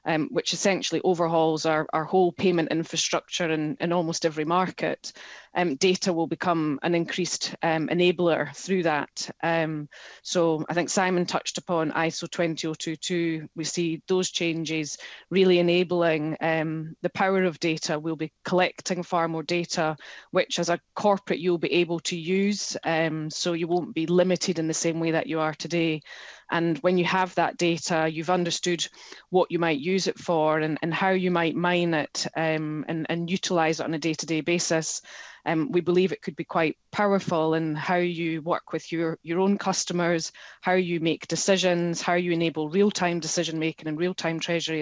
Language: English